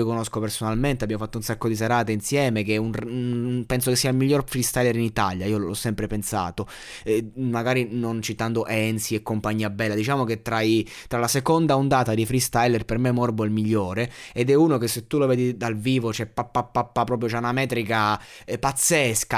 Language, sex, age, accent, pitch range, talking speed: Italian, male, 20-39, native, 110-135 Hz, 210 wpm